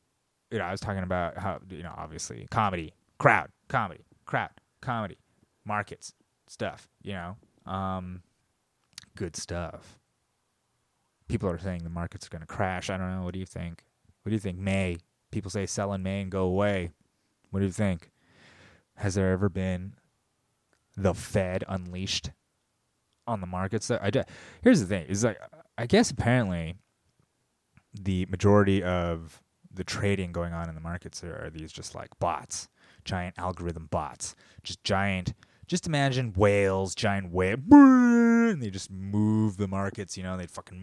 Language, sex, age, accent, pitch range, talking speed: English, male, 20-39, American, 90-105 Hz, 160 wpm